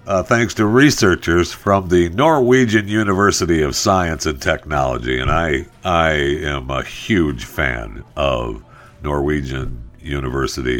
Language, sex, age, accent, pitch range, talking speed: English, male, 60-79, American, 85-120 Hz, 120 wpm